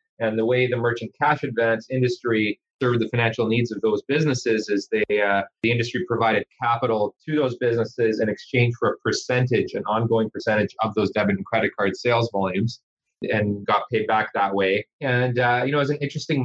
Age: 30-49